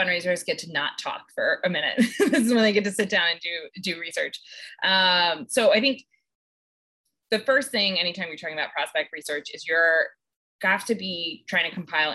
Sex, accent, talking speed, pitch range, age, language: female, American, 205 wpm, 160-205 Hz, 20-39, English